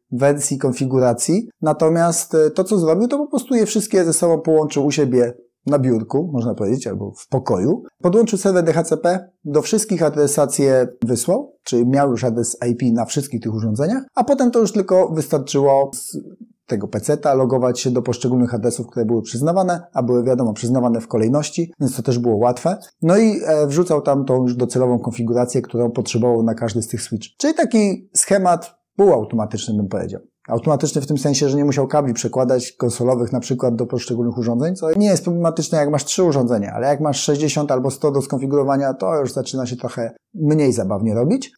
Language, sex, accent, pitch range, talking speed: Polish, male, native, 120-165 Hz, 185 wpm